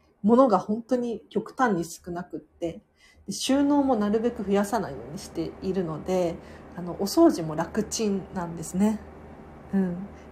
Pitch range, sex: 170-255 Hz, female